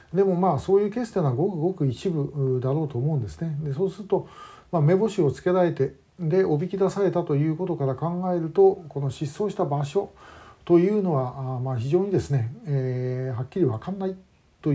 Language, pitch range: Japanese, 135-190 Hz